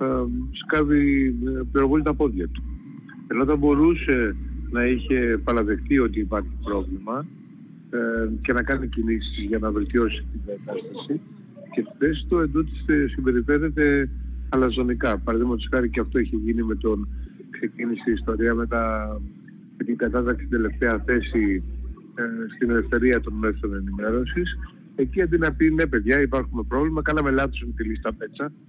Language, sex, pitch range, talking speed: Greek, male, 110-155 Hz, 135 wpm